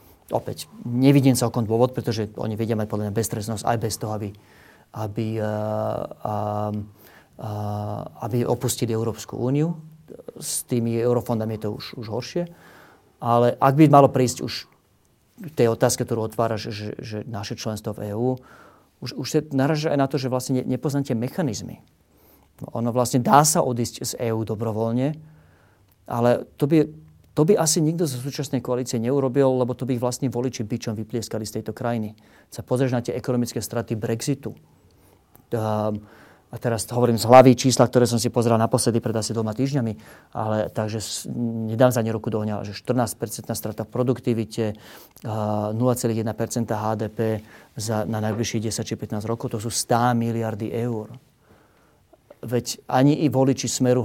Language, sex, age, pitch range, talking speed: Slovak, male, 40-59, 110-125 Hz, 155 wpm